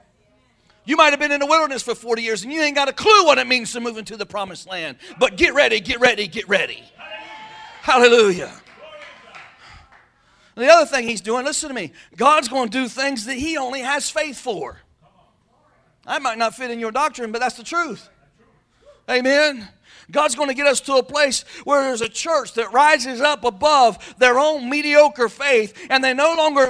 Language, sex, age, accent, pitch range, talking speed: English, male, 40-59, American, 245-310 Hz, 200 wpm